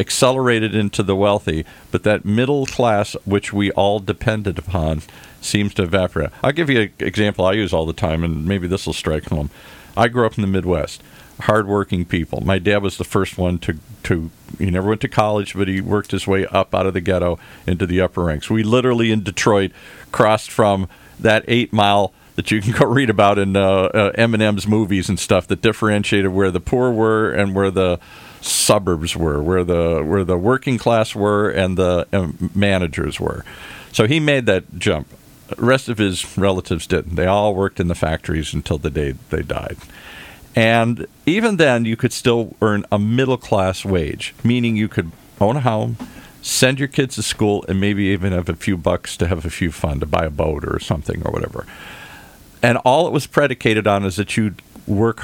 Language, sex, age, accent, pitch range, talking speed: English, male, 50-69, American, 90-110 Hz, 200 wpm